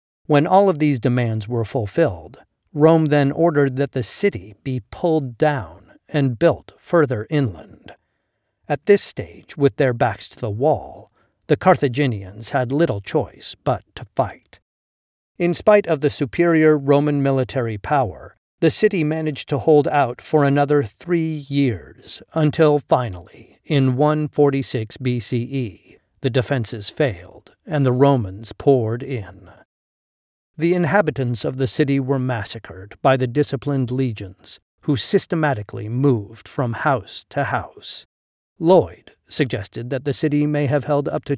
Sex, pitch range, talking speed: male, 115-150 Hz, 140 wpm